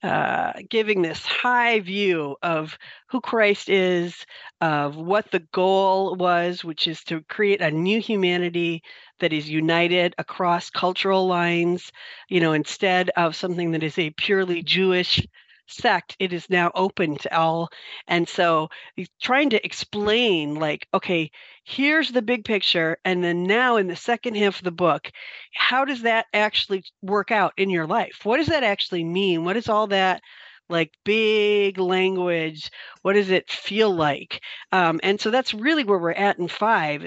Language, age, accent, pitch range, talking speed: English, 50-69, American, 170-210 Hz, 165 wpm